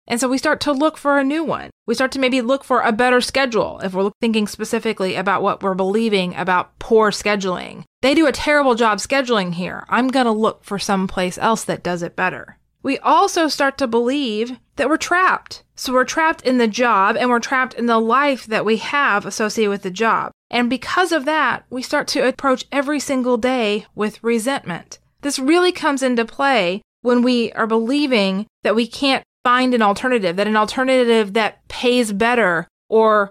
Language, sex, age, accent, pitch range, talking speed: English, female, 30-49, American, 210-260 Hz, 200 wpm